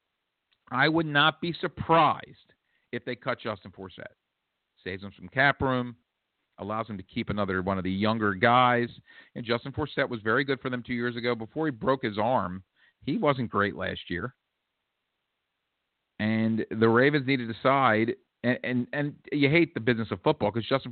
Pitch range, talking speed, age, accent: 100-130 Hz, 180 wpm, 50-69, American